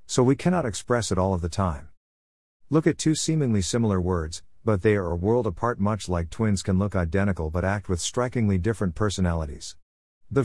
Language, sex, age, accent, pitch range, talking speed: English, male, 50-69, American, 85-115 Hz, 195 wpm